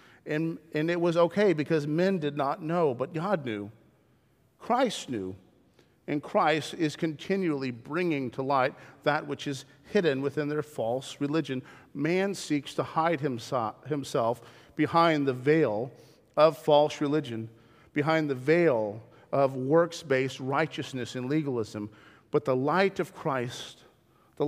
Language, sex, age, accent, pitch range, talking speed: English, male, 40-59, American, 135-170 Hz, 140 wpm